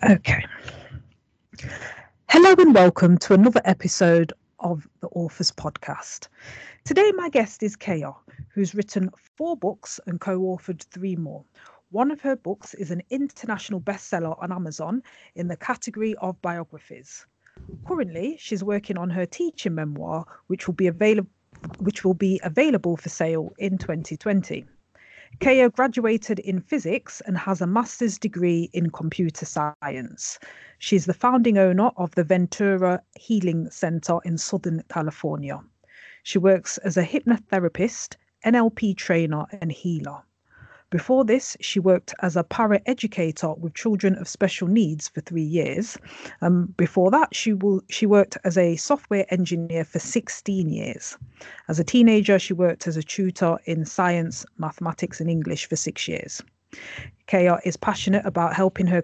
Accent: British